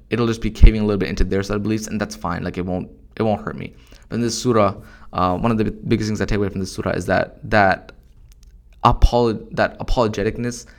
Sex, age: male, 20-39